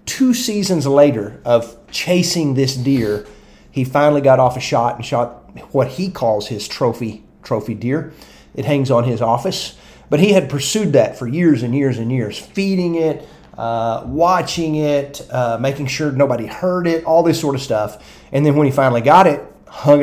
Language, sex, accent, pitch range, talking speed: English, male, American, 120-150 Hz, 185 wpm